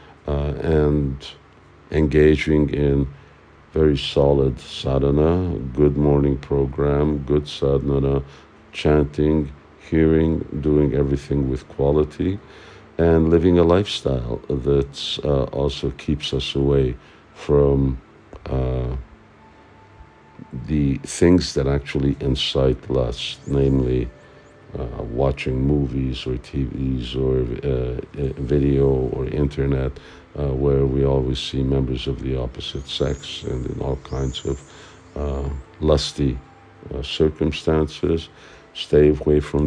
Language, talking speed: English, 105 wpm